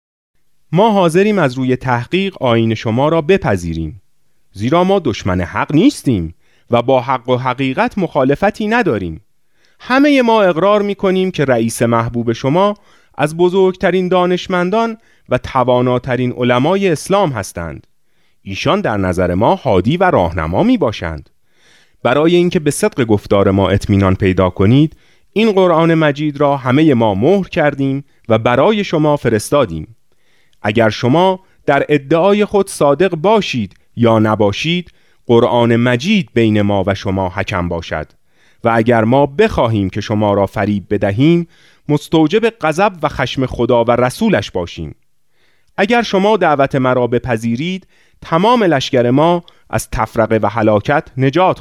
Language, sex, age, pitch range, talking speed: Persian, male, 30-49, 110-175 Hz, 135 wpm